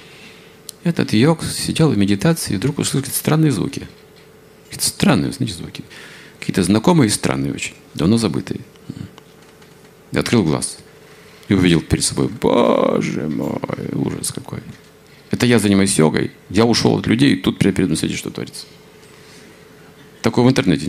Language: Russian